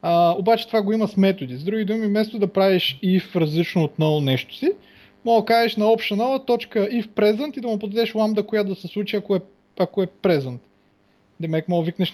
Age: 20-39